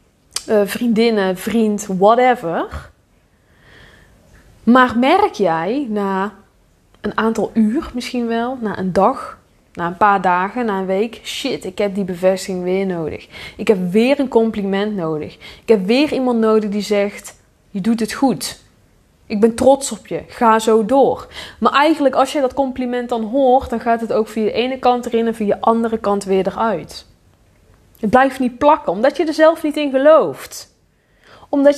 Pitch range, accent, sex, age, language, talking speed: 200-265 Hz, Dutch, female, 20-39, Dutch, 170 wpm